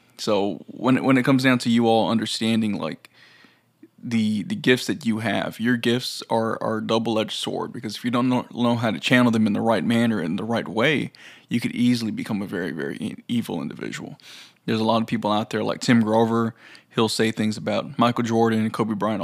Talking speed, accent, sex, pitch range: 220 wpm, American, male, 110-120 Hz